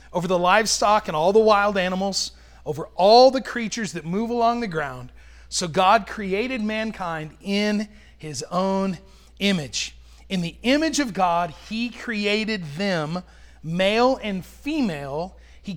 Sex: male